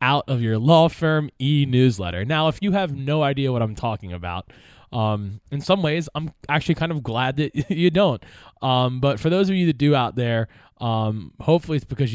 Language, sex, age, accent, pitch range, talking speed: English, male, 20-39, American, 115-160 Hz, 210 wpm